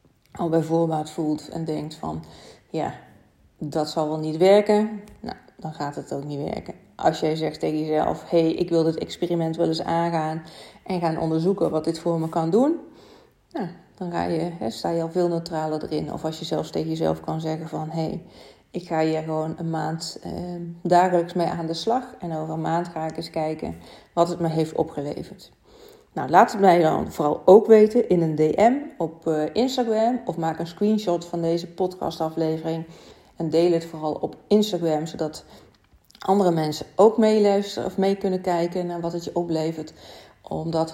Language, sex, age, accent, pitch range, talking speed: Dutch, female, 40-59, Dutch, 155-180 Hz, 195 wpm